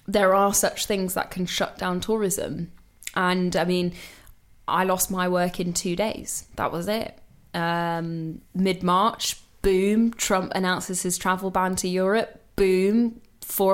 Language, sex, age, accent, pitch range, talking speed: English, female, 10-29, British, 175-210 Hz, 150 wpm